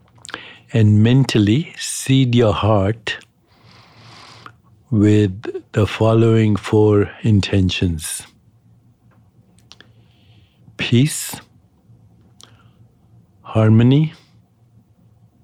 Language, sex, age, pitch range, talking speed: English, male, 60-79, 100-120 Hz, 45 wpm